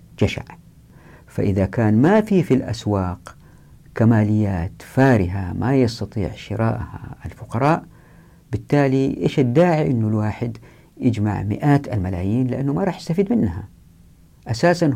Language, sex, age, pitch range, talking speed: Arabic, female, 50-69, 100-150 Hz, 110 wpm